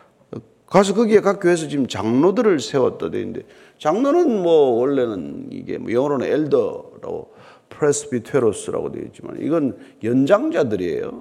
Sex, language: male, Korean